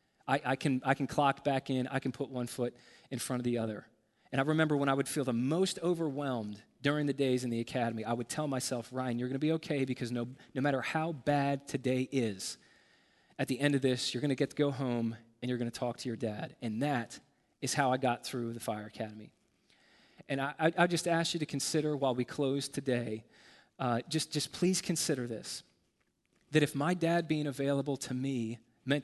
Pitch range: 120-145 Hz